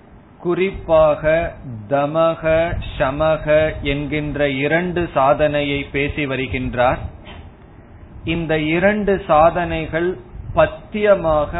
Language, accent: Tamil, native